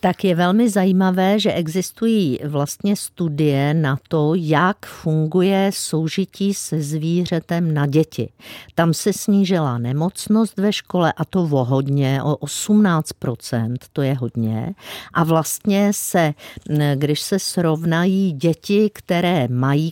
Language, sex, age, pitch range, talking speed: Czech, female, 50-69, 150-190 Hz, 125 wpm